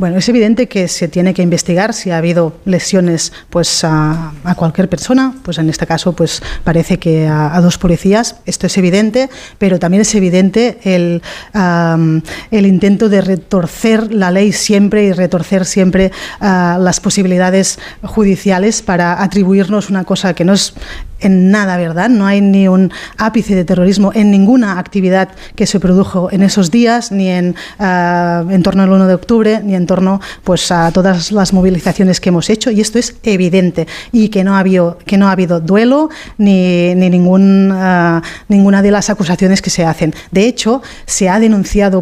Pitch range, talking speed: 180-205 Hz, 175 wpm